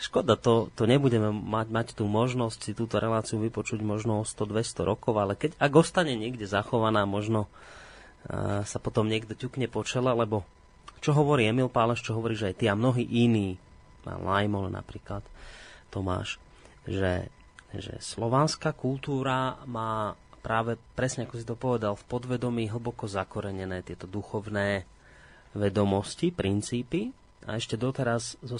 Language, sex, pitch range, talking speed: Slovak, male, 100-120 Hz, 145 wpm